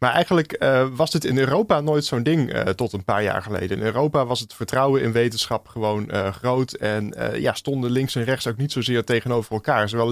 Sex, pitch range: male, 110-135 Hz